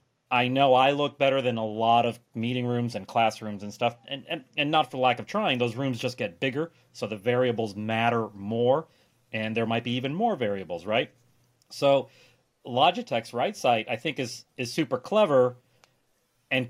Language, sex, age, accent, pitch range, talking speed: English, male, 40-59, American, 110-130 Hz, 185 wpm